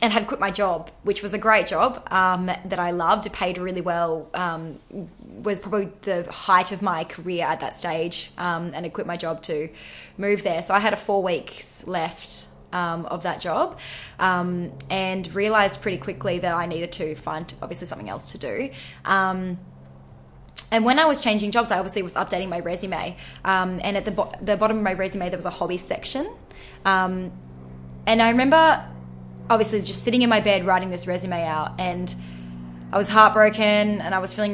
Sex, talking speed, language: female, 195 wpm, English